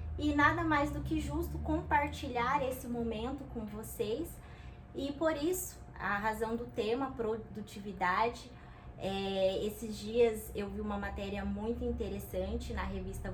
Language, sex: Portuguese, female